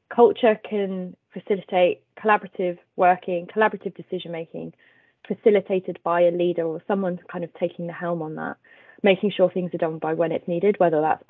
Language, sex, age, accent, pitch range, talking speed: English, female, 20-39, British, 170-195 Hz, 170 wpm